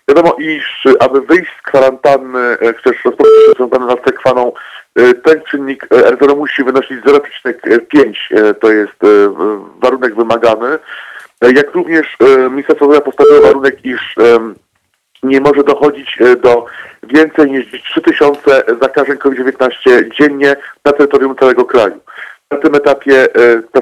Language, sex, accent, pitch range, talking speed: Polish, male, native, 125-155 Hz, 110 wpm